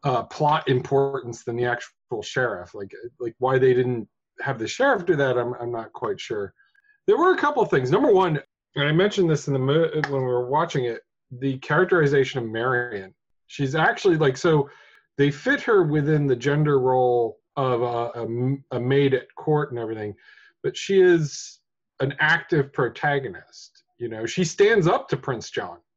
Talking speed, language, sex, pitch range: 180 wpm, English, male, 135-185 Hz